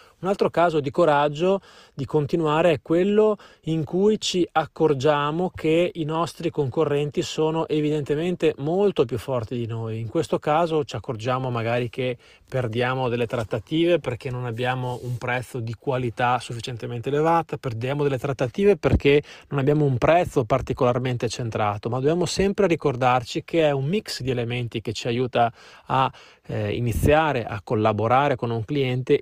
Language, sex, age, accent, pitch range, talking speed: Italian, male, 20-39, native, 120-155 Hz, 150 wpm